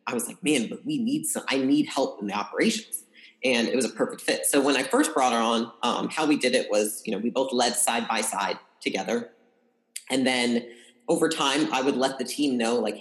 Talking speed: 245 wpm